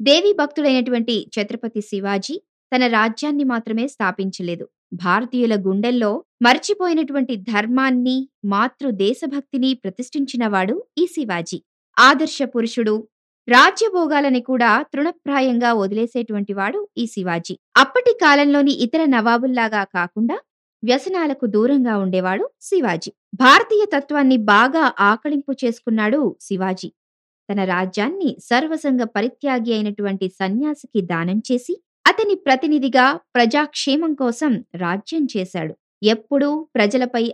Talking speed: 90 wpm